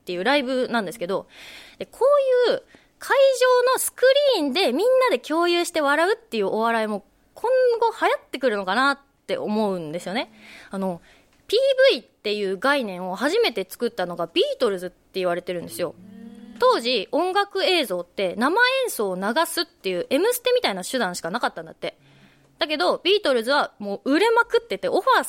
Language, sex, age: Japanese, female, 20-39